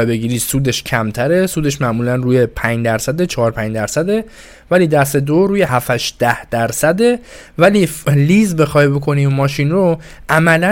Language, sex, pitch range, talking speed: Persian, male, 125-180 Hz, 150 wpm